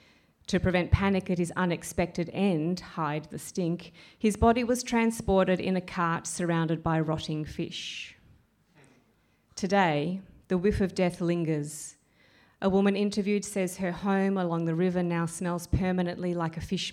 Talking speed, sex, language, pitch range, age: 150 wpm, female, English, 165-195 Hz, 30-49